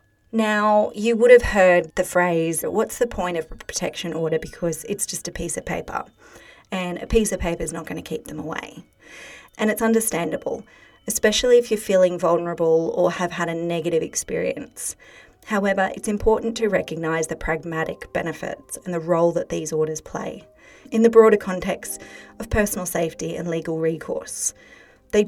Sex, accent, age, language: female, Australian, 30-49, English